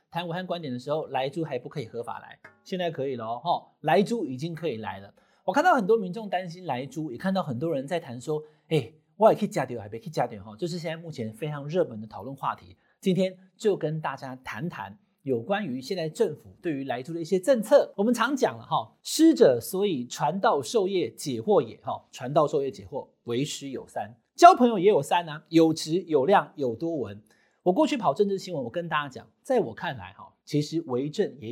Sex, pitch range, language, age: male, 150-220 Hz, Chinese, 30-49